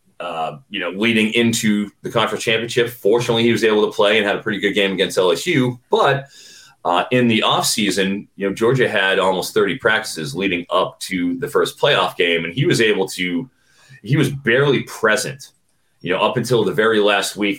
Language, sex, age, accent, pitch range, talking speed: English, male, 30-49, American, 105-140 Hz, 200 wpm